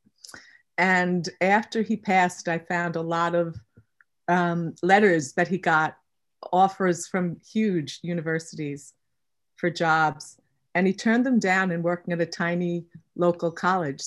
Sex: female